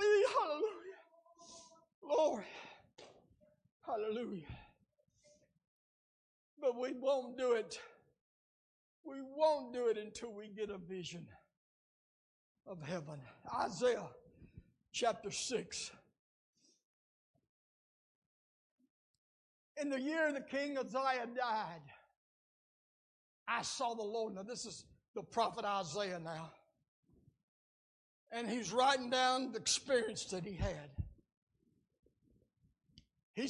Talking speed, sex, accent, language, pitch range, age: 90 wpm, male, American, English, 225-295 Hz, 60-79